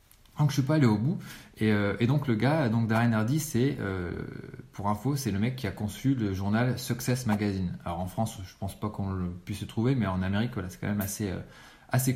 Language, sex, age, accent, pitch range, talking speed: French, male, 20-39, French, 105-130 Hz, 250 wpm